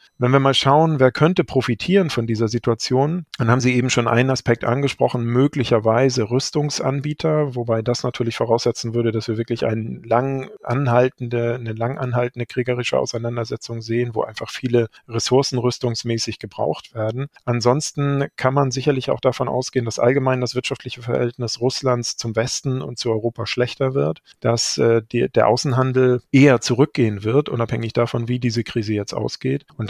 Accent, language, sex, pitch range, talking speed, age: German, German, male, 115-130 Hz, 155 wpm, 40-59